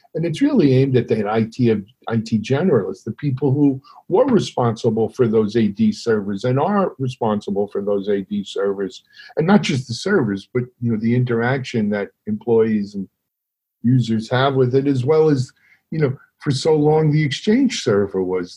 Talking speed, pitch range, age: 190 wpm, 105-140 Hz, 50-69